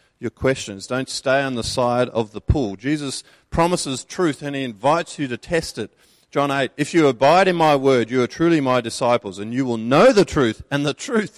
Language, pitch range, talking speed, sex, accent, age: English, 110-140 Hz, 220 wpm, male, Australian, 40-59